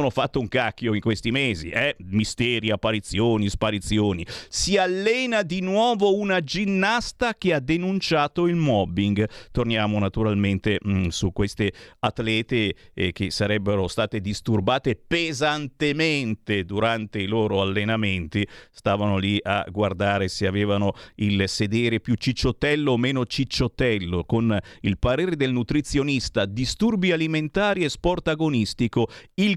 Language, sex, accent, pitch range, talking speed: Italian, male, native, 105-150 Hz, 125 wpm